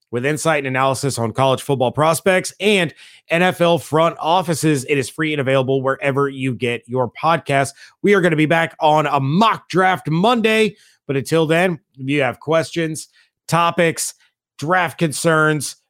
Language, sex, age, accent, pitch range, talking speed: English, male, 30-49, American, 125-160 Hz, 160 wpm